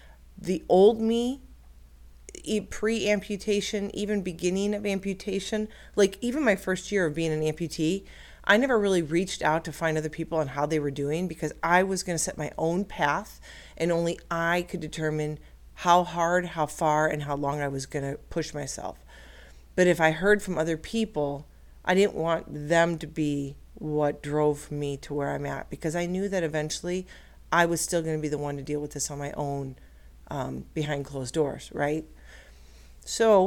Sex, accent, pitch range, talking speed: female, American, 150-200 Hz, 185 wpm